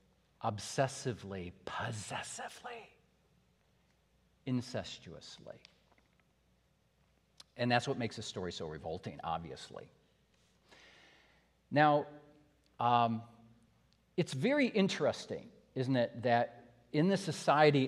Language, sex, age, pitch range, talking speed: English, male, 50-69, 115-145 Hz, 75 wpm